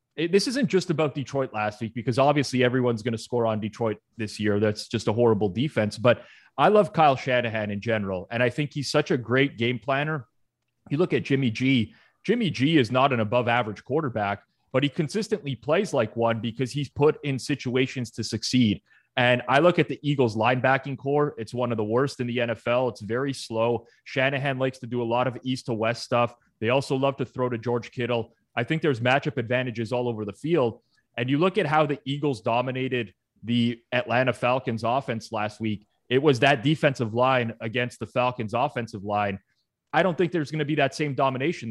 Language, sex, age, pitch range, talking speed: English, male, 30-49, 115-140 Hz, 210 wpm